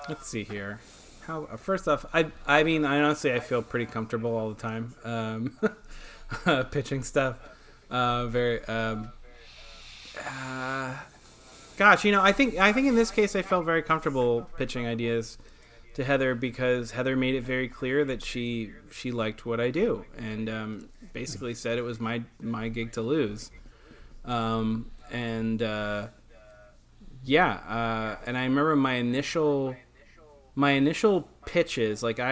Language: English